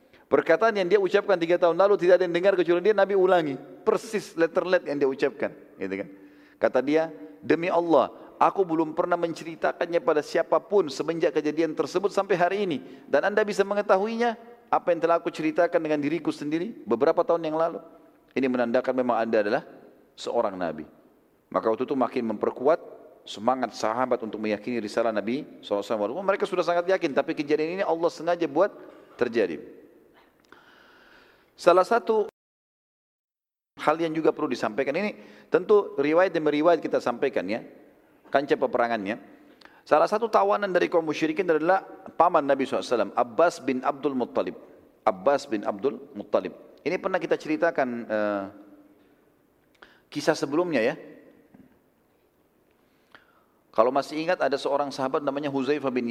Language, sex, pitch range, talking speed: Indonesian, male, 140-195 Hz, 145 wpm